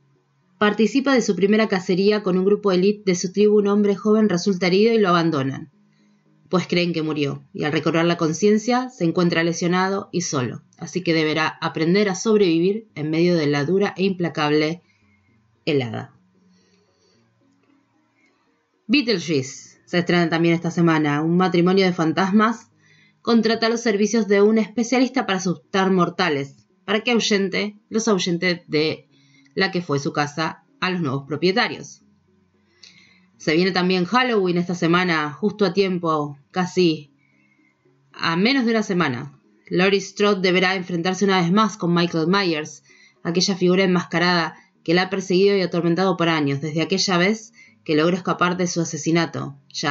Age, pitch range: 20-39, 160-200 Hz